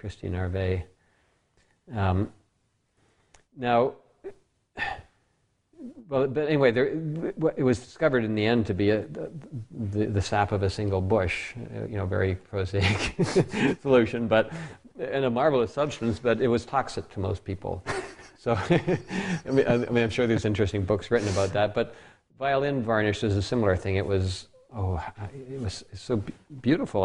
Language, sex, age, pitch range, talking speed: English, male, 50-69, 95-115 Hz, 155 wpm